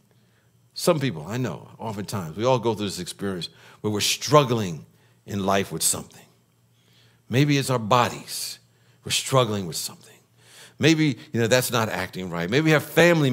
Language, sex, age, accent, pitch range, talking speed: English, male, 60-79, American, 105-145 Hz, 165 wpm